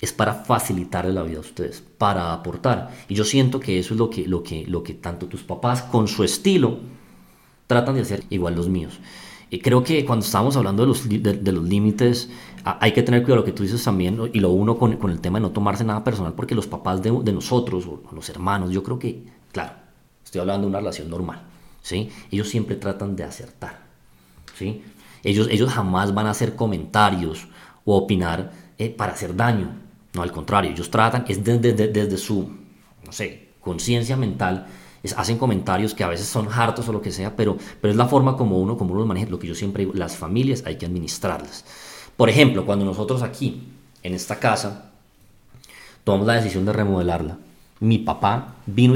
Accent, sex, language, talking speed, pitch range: Colombian, male, Spanish, 210 wpm, 90-115 Hz